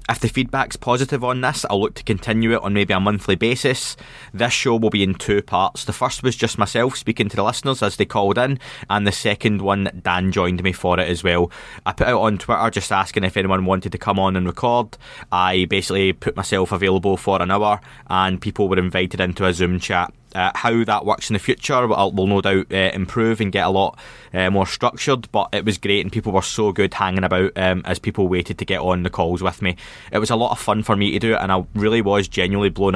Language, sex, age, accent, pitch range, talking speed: English, male, 20-39, British, 95-105 Hz, 250 wpm